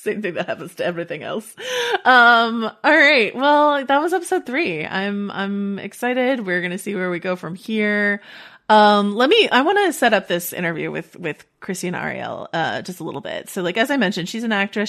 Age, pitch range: 30-49, 170-220 Hz